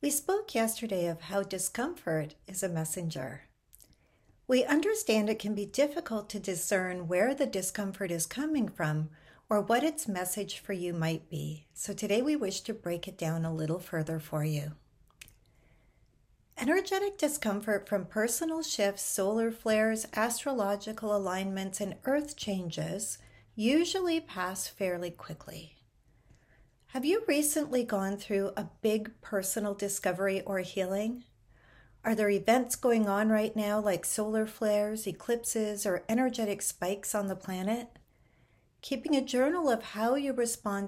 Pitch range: 175-230 Hz